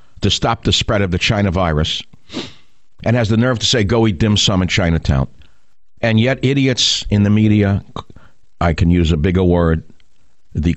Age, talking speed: 60-79, 185 wpm